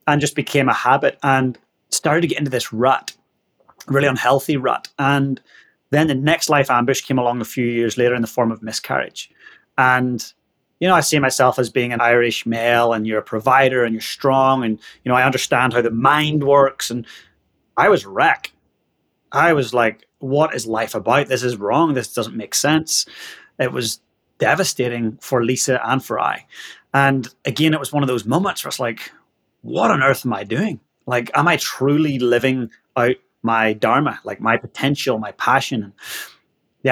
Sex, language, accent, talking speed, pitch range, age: male, English, British, 190 wpm, 120-140 Hz, 30-49